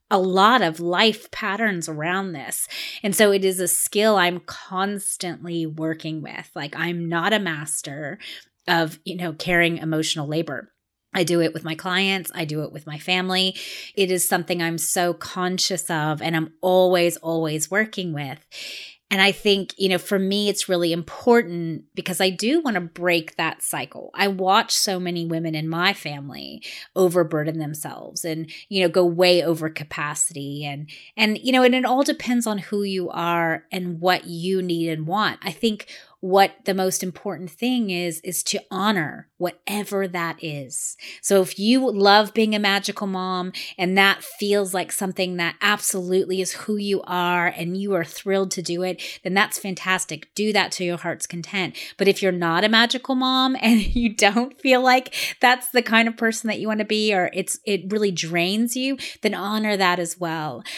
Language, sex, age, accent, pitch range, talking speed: English, female, 30-49, American, 170-205 Hz, 185 wpm